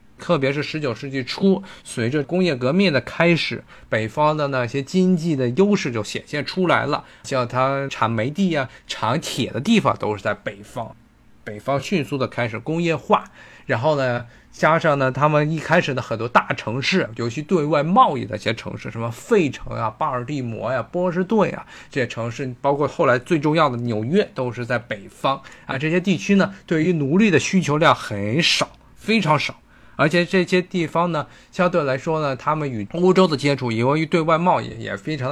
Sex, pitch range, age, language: male, 125-175 Hz, 20-39, Chinese